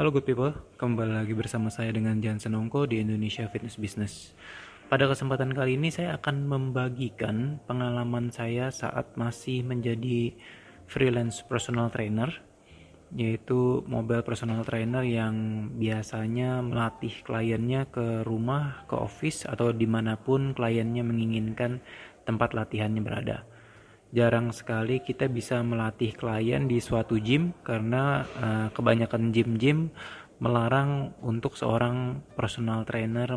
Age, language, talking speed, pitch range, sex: 20-39, Indonesian, 120 wpm, 115-130 Hz, male